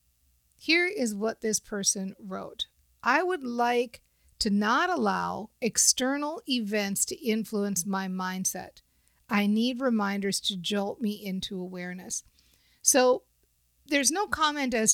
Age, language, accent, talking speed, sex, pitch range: 50-69, English, American, 125 wpm, female, 185-230 Hz